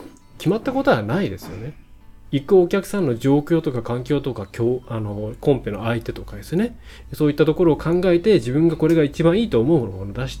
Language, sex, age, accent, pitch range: Japanese, male, 20-39, native, 110-155 Hz